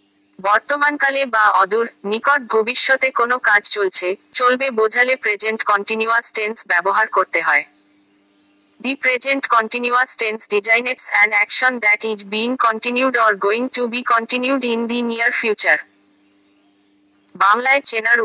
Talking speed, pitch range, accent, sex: 35 wpm, 200-245 Hz, native, female